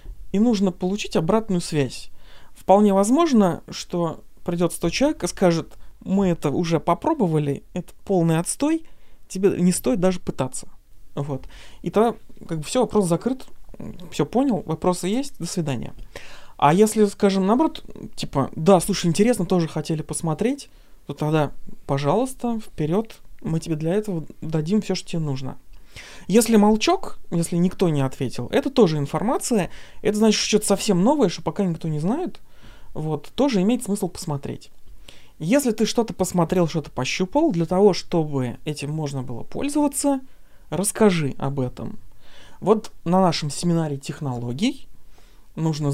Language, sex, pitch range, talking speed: Russian, male, 150-210 Hz, 145 wpm